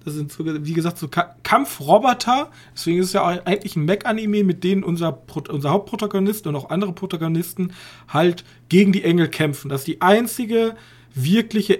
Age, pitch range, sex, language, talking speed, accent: 40-59, 130-190 Hz, male, German, 185 wpm, German